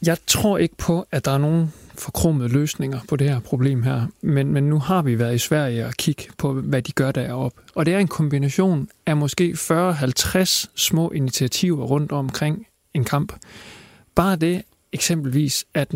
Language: Danish